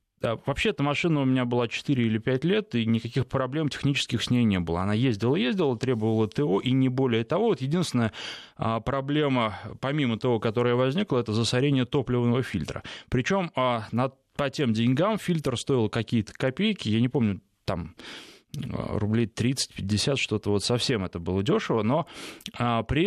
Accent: native